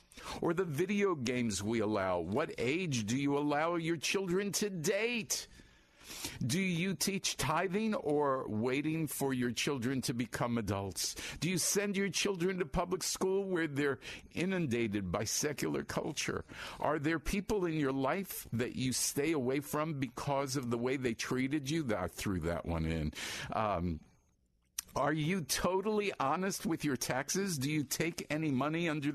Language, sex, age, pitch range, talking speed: English, male, 50-69, 130-185 Hz, 165 wpm